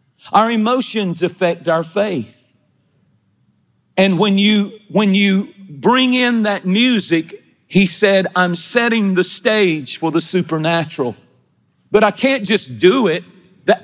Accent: American